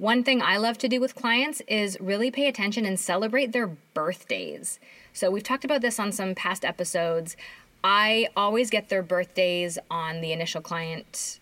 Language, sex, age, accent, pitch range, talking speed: English, female, 20-39, American, 180-235 Hz, 180 wpm